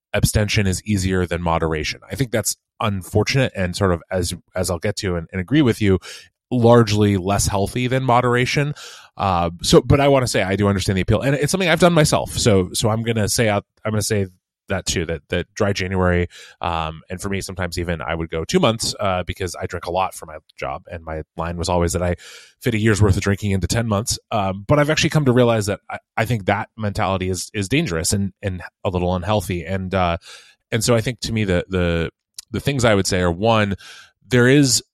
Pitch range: 90-115 Hz